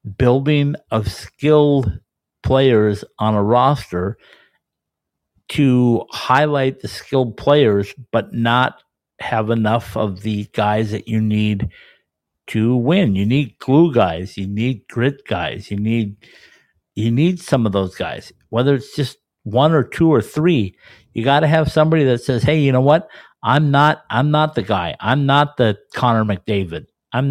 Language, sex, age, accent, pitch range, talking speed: English, male, 50-69, American, 110-145 Hz, 155 wpm